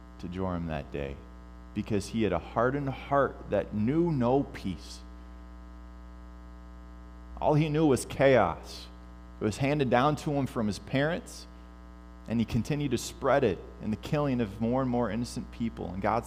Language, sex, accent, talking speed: English, male, American, 165 wpm